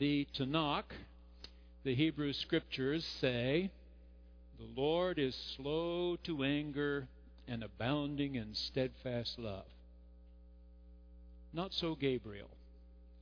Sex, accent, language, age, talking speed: male, American, English, 60-79, 90 wpm